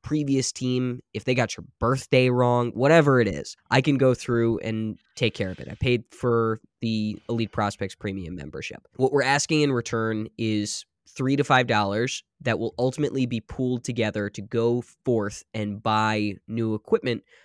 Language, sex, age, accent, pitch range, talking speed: English, male, 10-29, American, 105-125 Hz, 175 wpm